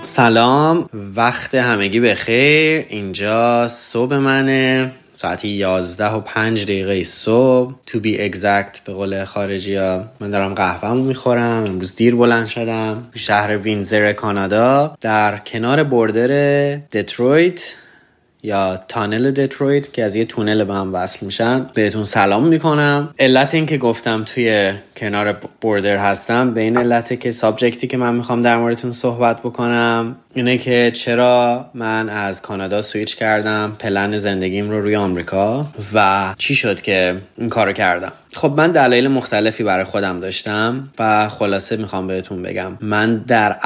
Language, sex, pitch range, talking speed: Persian, male, 100-120 Hz, 145 wpm